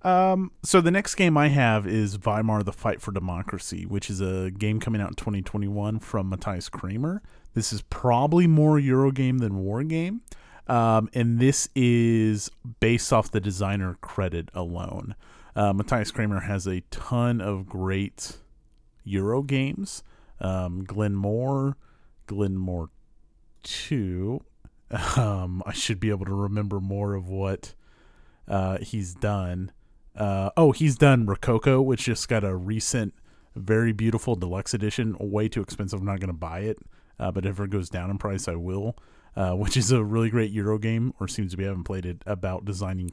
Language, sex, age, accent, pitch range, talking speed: English, male, 30-49, American, 95-120 Hz, 165 wpm